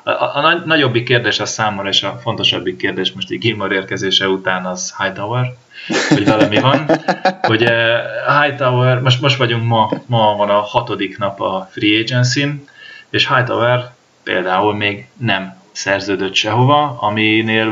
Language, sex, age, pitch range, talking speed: Hungarian, male, 30-49, 95-120 Hz, 140 wpm